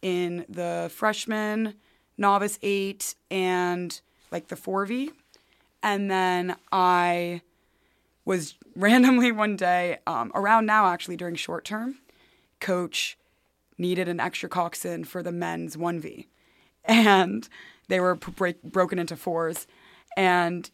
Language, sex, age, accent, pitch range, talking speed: English, female, 20-39, American, 175-215 Hz, 115 wpm